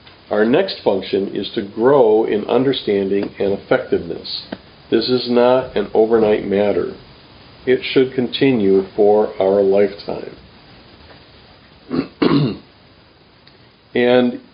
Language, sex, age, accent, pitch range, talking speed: English, male, 50-69, American, 110-130 Hz, 95 wpm